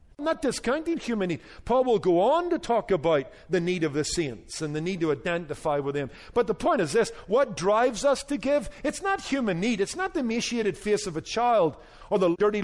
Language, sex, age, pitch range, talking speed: English, male, 50-69, 170-235 Hz, 230 wpm